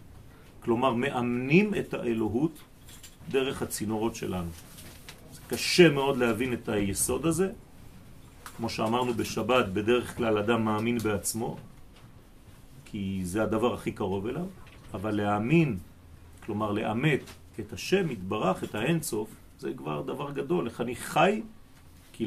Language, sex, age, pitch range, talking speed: French, male, 40-59, 110-175 Hz, 120 wpm